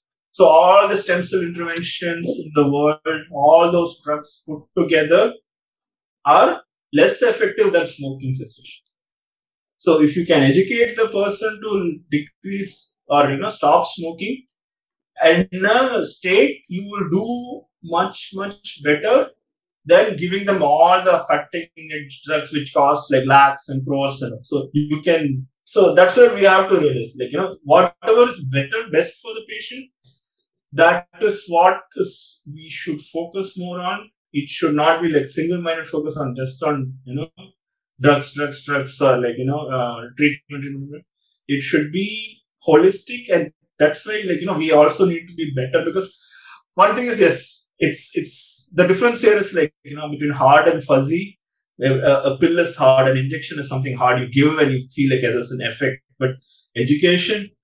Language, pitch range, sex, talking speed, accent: Hindi, 145-195 Hz, male, 175 wpm, native